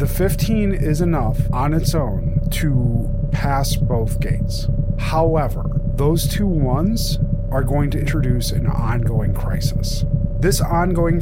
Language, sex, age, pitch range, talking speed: English, male, 30-49, 115-140 Hz, 130 wpm